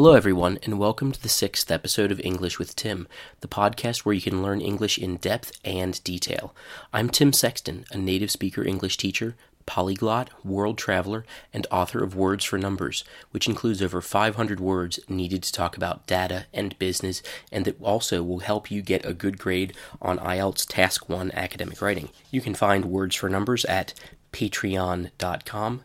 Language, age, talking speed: English, 30-49, 175 wpm